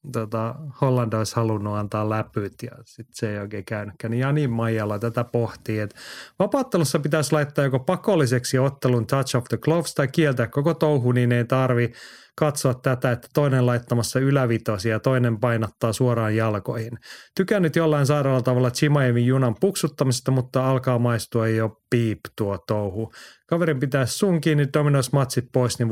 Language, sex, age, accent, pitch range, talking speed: Finnish, male, 30-49, native, 115-150 Hz, 155 wpm